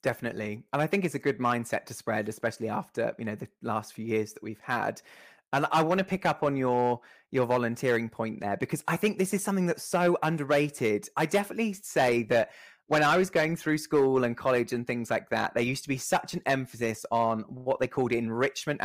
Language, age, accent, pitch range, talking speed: English, 20-39, British, 115-155 Hz, 225 wpm